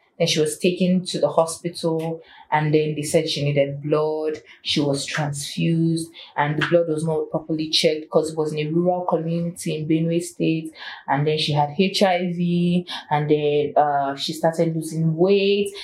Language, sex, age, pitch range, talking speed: English, female, 20-39, 150-180 Hz, 175 wpm